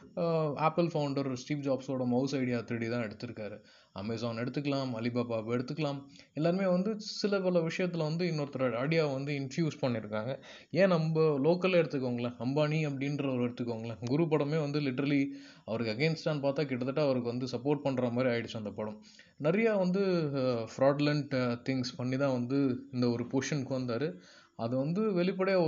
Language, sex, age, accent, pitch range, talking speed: Tamil, male, 20-39, native, 125-160 Hz, 145 wpm